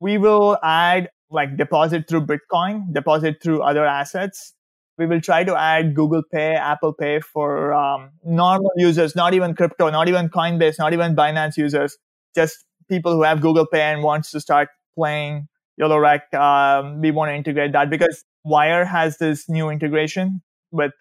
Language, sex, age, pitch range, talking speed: English, male, 20-39, 150-170 Hz, 165 wpm